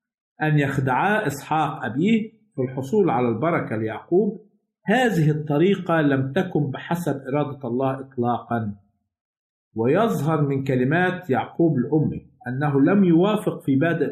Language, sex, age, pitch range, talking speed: Arabic, male, 50-69, 135-175 Hz, 115 wpm